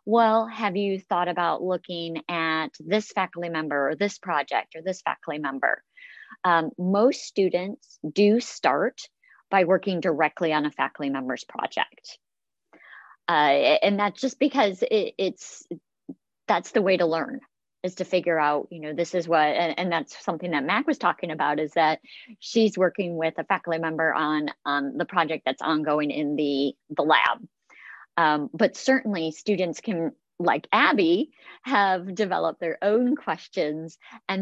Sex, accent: female, American